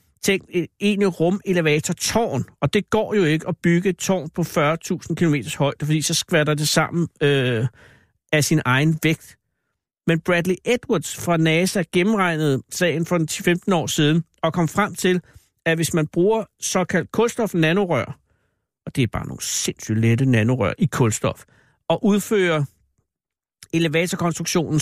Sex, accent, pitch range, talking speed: male, native, 135-180 Hz, 150 wpm